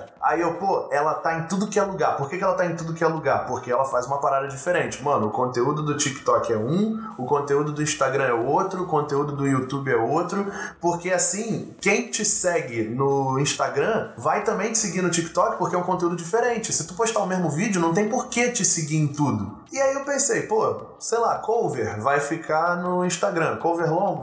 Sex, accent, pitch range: male, Brazilian, 140-200 Hz